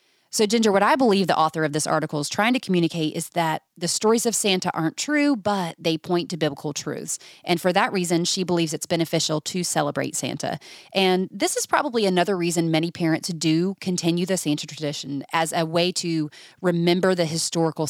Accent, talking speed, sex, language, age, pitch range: American, 200 wpm, female, English, 30-49, 160-200 Hz